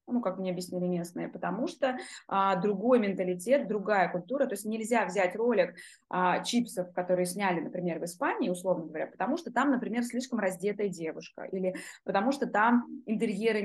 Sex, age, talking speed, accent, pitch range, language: female, 20-39, 165 wpm, native, 180-225 Hz, Russian